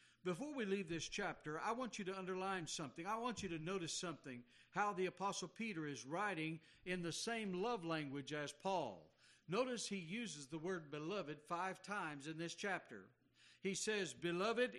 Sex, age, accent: male, 60-79, American